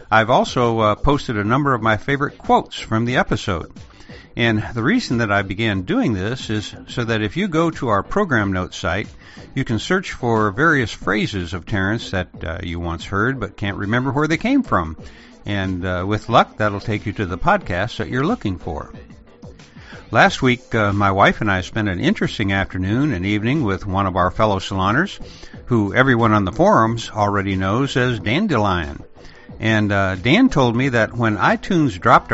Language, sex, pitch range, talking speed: English, male, 95-125 Hz, 190 wpm